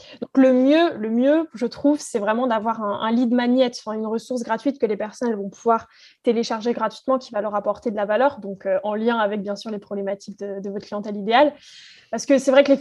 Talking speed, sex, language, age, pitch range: 240 wpm, female, French, 20-39, 220-270 Hz